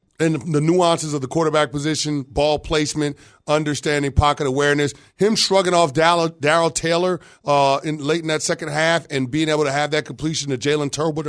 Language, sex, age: English, male, 30-49